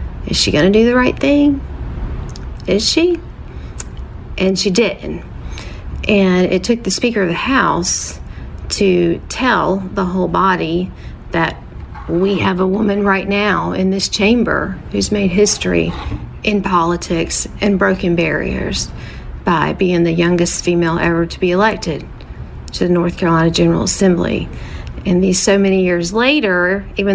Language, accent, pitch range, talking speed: English, American, 175-215 Hz, 145 wpm